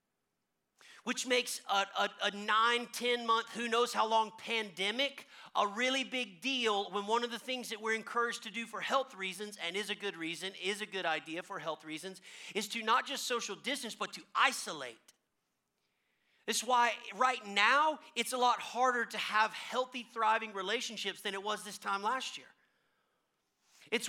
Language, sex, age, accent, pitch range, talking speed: English, male, 40-59, American, 195-245 Hz, 180 wpm